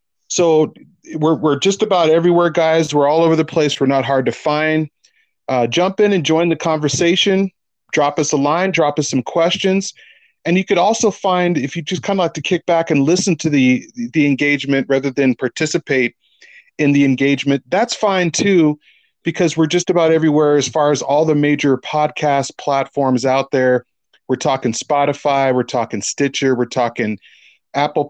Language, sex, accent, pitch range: English, male, American, 135-170 Hz